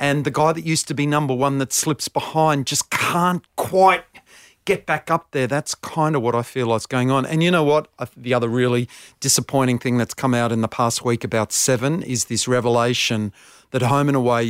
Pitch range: 120-145 Hz